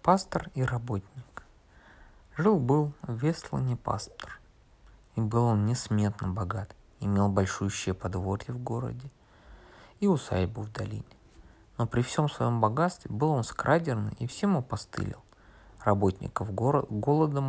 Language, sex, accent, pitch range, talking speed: Russian, male, native, 100-140 Hz, 120 wpm